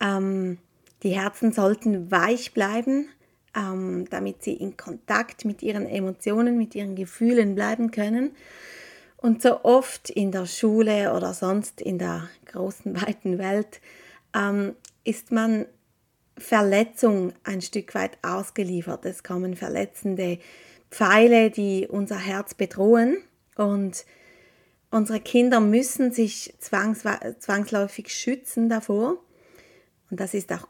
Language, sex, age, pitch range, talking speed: German, female, 30-49, 190-225 Hz, 110 wpm